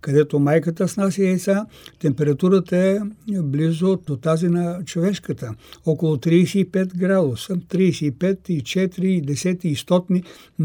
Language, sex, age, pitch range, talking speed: Bulgarian, male, 60-79, 150-185 Hz, 120 wpm